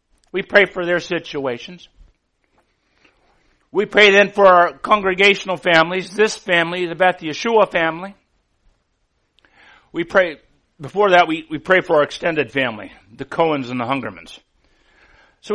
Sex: male